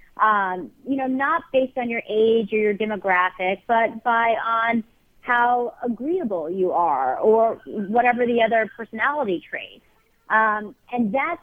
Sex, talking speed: female, 135 wpm